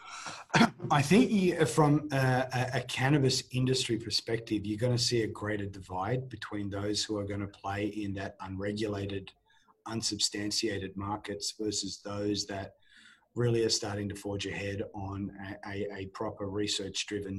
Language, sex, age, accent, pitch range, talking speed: English, male, 30-49, Australian, 100-120 Hz, 140 wpm